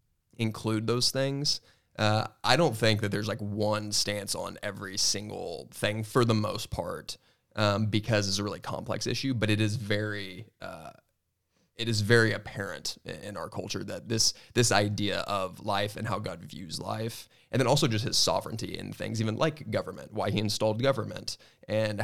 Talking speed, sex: 180 wpm, male